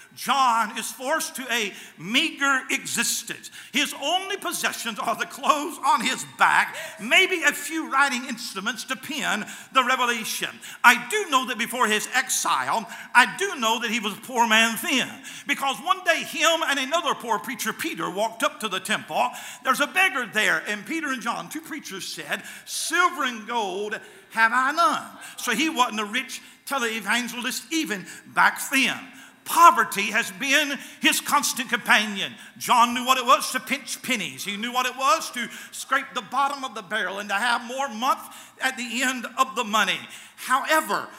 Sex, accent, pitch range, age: male, American, 230-290 Hz, 50-69